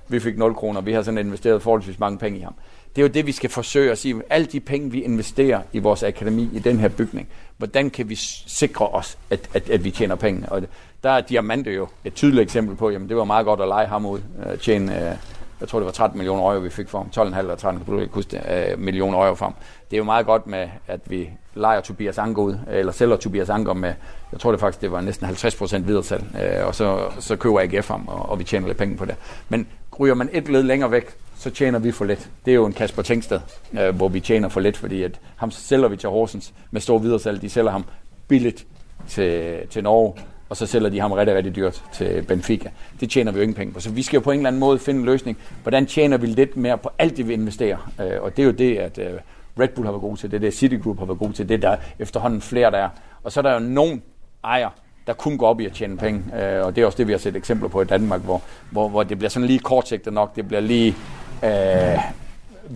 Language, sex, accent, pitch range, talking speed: Danish, male, native, 100-120 Hz, 260 wpm